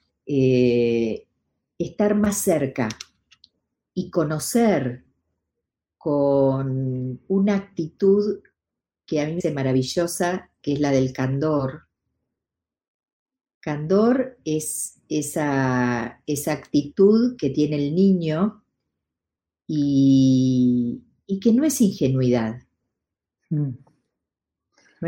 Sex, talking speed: female, 85 wpm